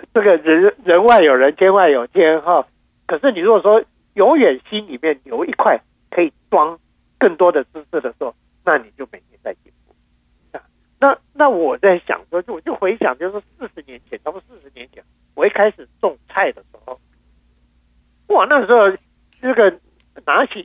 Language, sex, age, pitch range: Chinese, male, 50-69, 140-220 Hz